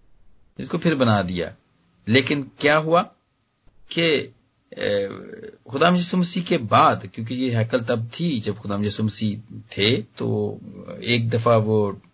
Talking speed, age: 125 wpm, 40-59